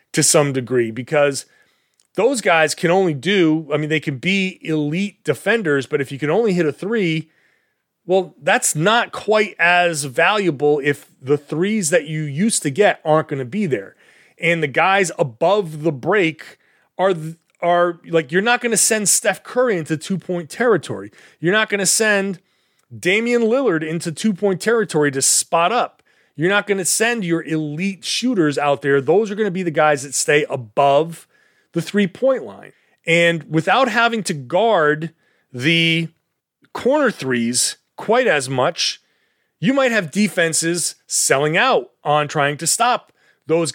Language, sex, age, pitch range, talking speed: English, male, 30-49, 150-195 Hz, 170 wpm